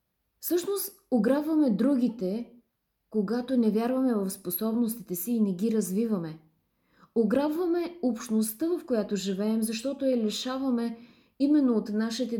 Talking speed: 115 wpm